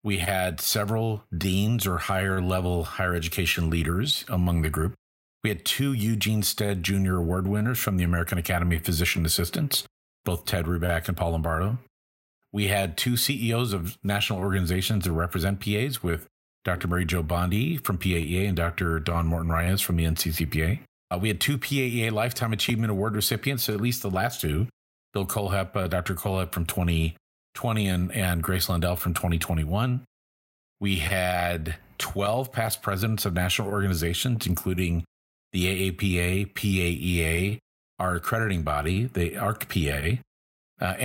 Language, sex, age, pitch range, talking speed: English, male, 40-59, 85-105 Hz, 155 wpm